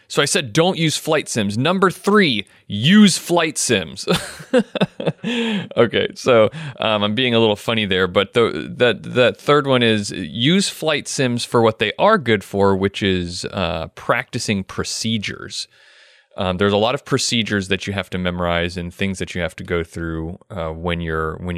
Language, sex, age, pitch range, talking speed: English, male, 30-49, 90-120 Hz, 180 wpm